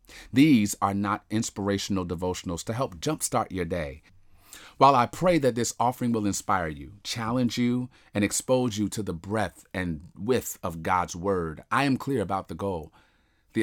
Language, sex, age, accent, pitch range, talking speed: English, male, 40-59, American, 95-120 Hz, 170 wpm